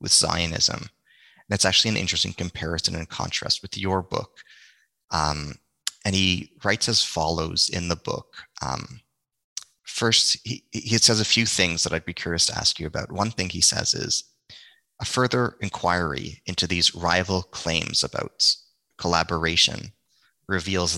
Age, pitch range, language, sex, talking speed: 30-49, 85-100 Hz, English, male, 150 wpm